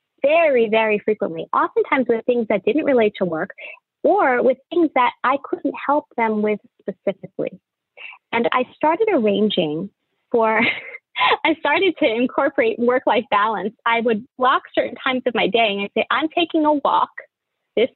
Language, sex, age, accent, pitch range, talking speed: English, female, 20-39, American, 220-310 Hz, 160 wpm